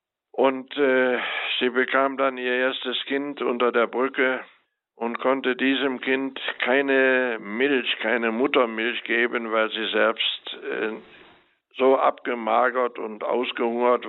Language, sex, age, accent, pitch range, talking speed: German, male, 60-79, German, 115-135 Hz, 120 wpm